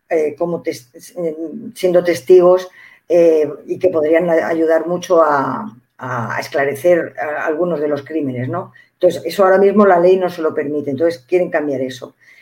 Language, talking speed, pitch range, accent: Spanish, 160 wpm, 165-195 Hz, Spanish